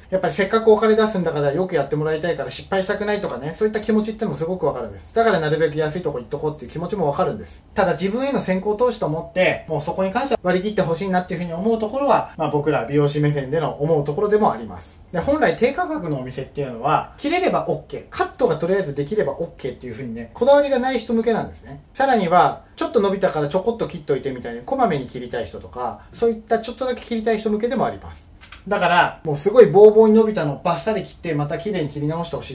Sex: male